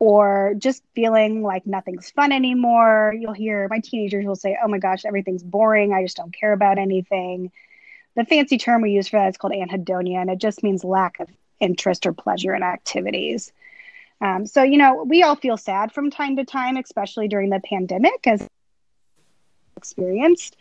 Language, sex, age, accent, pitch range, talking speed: English, female, 30-49, American, 190-255 Hz, 185 wpm